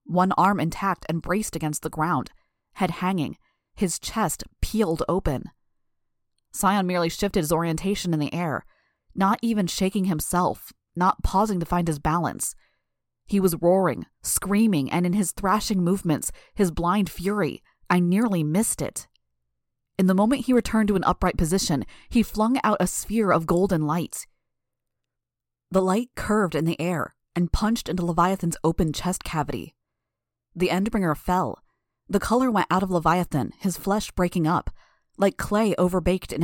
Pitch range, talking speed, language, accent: 160-195 Hz, 155 wpm, English, American